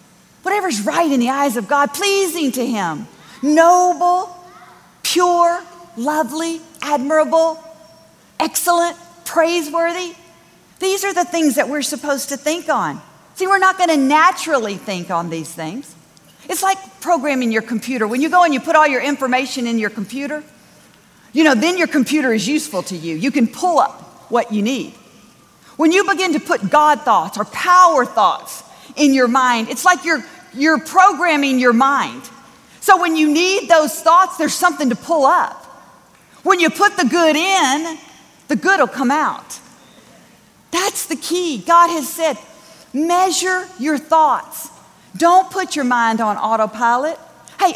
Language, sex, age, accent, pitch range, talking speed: English, female, 40-59, American, 265-345 Hz, 160 wpm